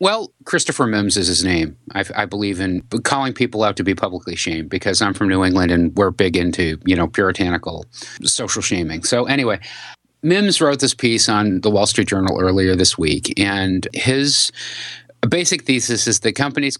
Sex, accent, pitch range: male, American, 95-130 Hz